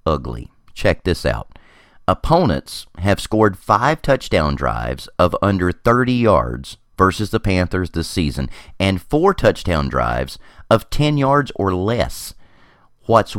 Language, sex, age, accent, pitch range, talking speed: English, male, 40-59, American, 80-130 Hz, 130 wpm